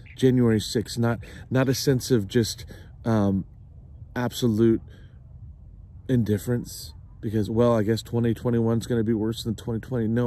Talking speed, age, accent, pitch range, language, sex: 140 wpm, 40-59, American, 105-125 Hz, English, male